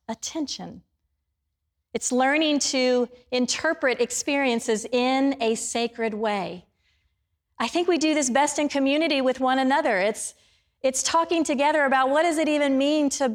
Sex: female